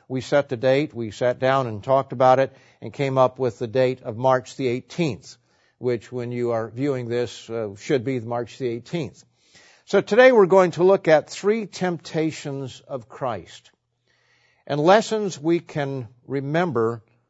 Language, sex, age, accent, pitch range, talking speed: English, male, 50-69, American, 125-150 Hz, 170 wpm